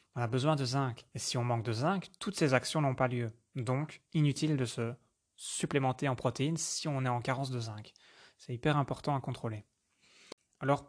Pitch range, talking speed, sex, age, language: 120-145 Hz, 205 wpm, male, 20-39, French